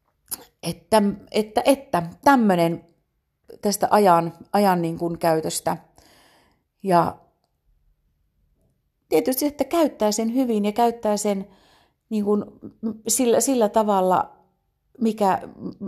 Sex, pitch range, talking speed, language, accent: female, 170-220 Hz, 95 wpm, Finnish, native